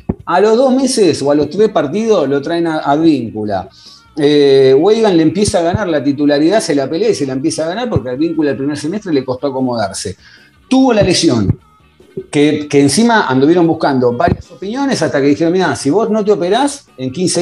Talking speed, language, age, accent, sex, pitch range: 210 wpm, Spanish, 40-59, Argentinian, male, 140-210 Hz